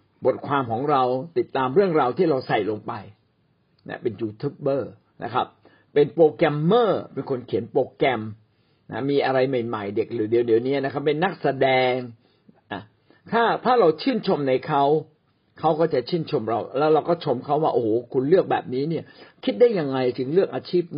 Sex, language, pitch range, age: male, Thai, 130-175 Hz, 60-79